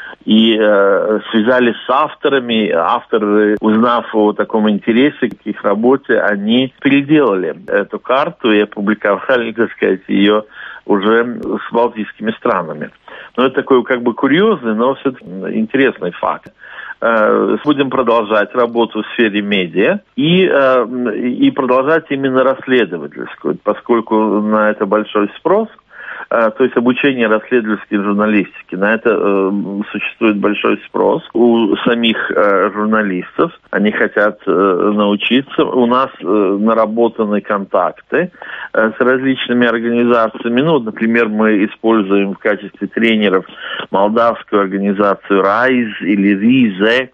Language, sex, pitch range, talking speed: Russian, male, 105-120 Hz, 120 wpm